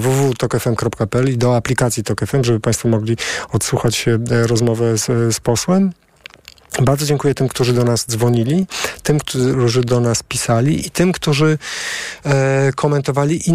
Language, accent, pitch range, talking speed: Polish, native, 120-150 Hz, 155 wpm